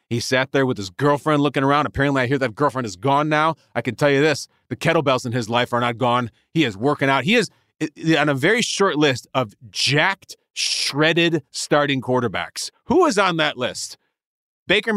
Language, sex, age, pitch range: English, male, 30-49, 120-160 Hz